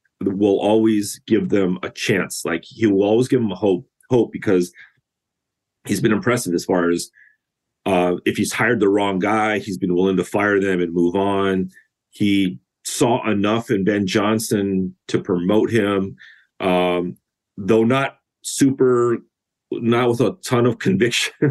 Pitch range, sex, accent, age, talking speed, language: 90-115 Hz, male, American, 40-59, 160 wpm, English